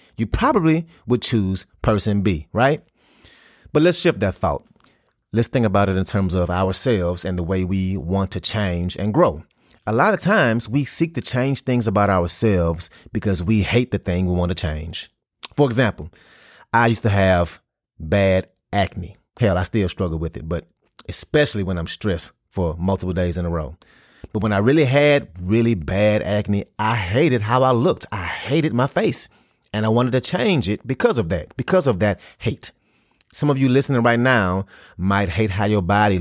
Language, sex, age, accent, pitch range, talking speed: English, male, 30-49, American, 95-125 Hz, 190 wpm